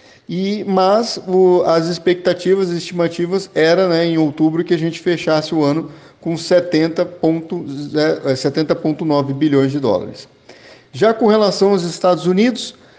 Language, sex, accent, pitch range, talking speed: Portuguese, male, Brazilian, 135-170 Hz, 130 wpm